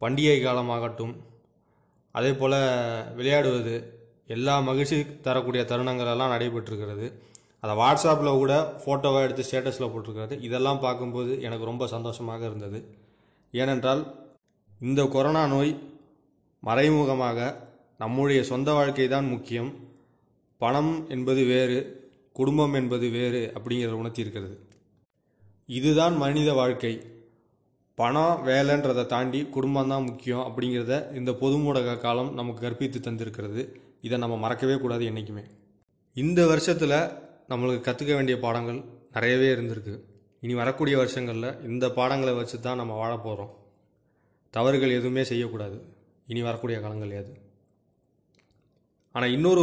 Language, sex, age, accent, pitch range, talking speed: Tamil, male, 20-39, native, 115-135 Hz, 110 wpm